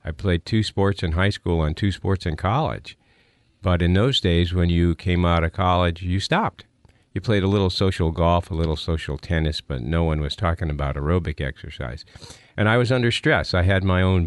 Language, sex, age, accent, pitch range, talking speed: English, male, 50-69, American, 75-100 Hz, 215 wpm